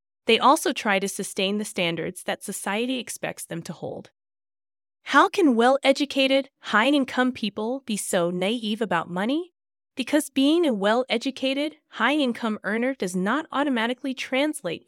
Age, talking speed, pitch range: 20-39, 135 wpm, 190-270 Hz